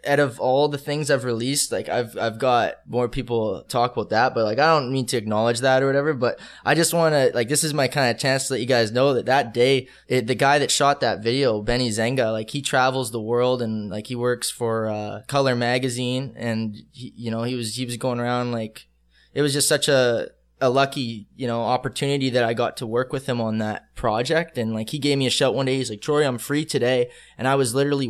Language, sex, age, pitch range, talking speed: English, male, 10-29, 115-135 Hz, 250 wpm